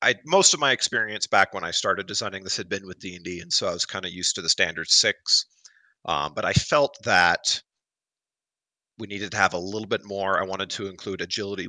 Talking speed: 225 wpm